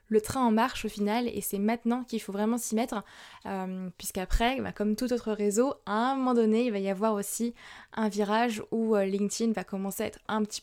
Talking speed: 225 wpm